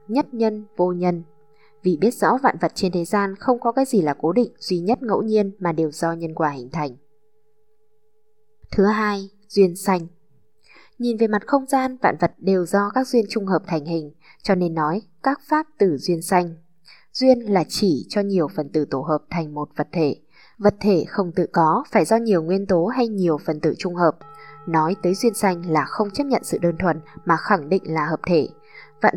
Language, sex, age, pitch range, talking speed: Vietnamese, female, 10-29, 165-225 Hz, 215 wpm